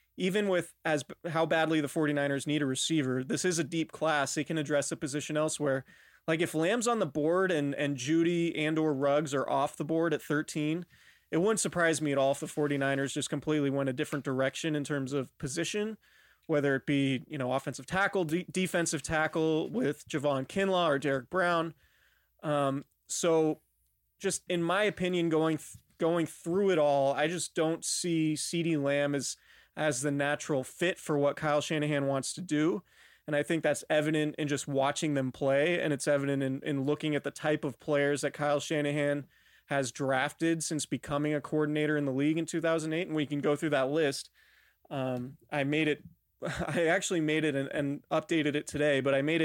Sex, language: male, English